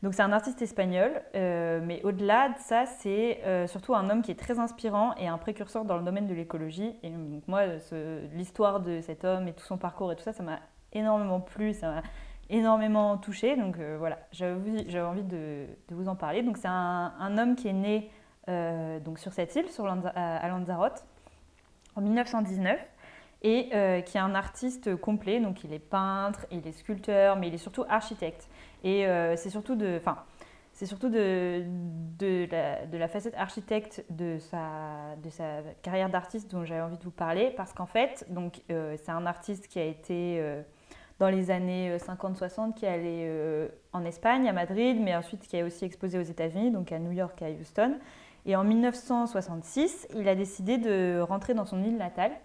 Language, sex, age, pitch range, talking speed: French, female, 20-39, 170-215 Hz, 200 wpm